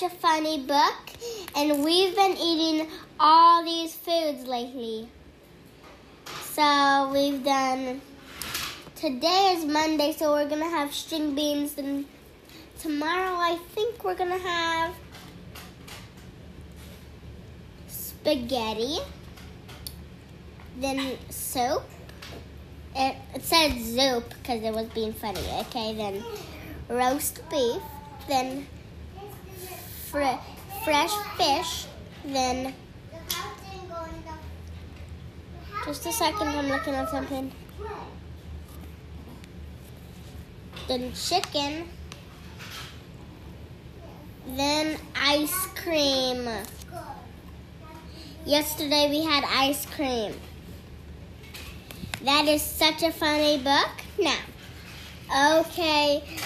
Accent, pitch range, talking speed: American, 255-325 Hz, 80 wpm